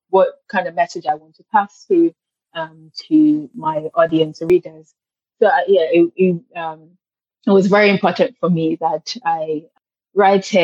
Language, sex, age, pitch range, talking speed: English, female, 20-39, 165-200 Hz, 170 wpm